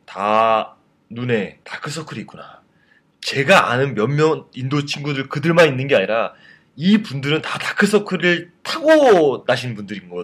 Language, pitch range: Korean, 115-185 Hz